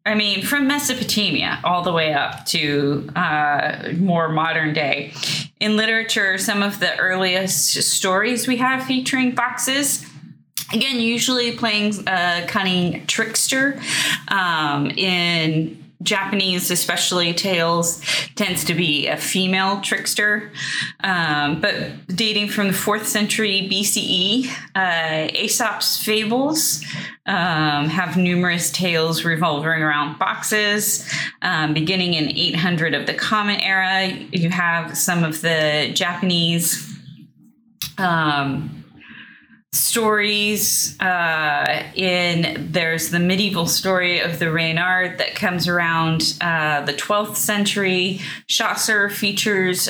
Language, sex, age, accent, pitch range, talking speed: English, female, 20-39, American, 165-205 Hz, 110 wpm